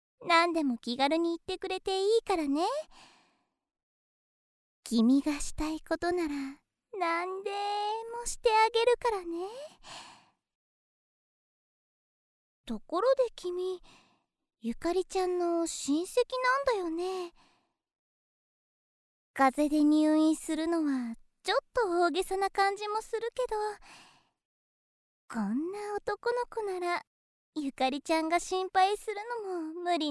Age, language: 20-39, Japanese